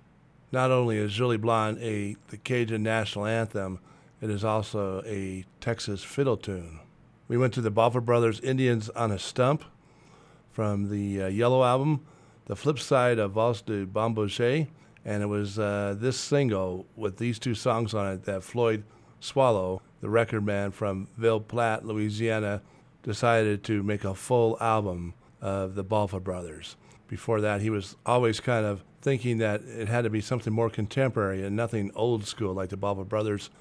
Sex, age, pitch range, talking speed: male, 40-59, 105-120 Hz, 170 wpm